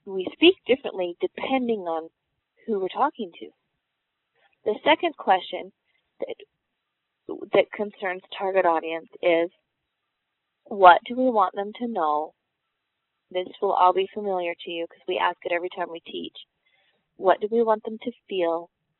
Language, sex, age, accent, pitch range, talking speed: English, female, 30-49, American, 175-220 Hz, 150 wpm